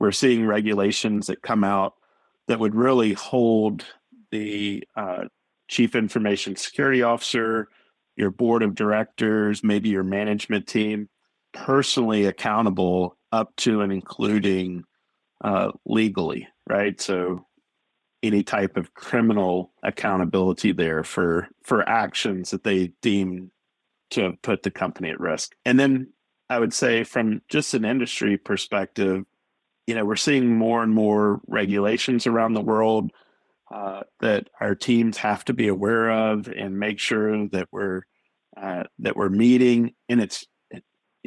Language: English